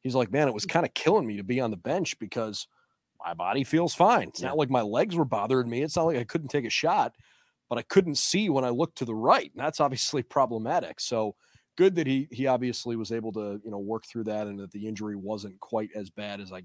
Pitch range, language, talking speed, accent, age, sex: 110-135 Hz, English, 265 wpm, American, 30-49, male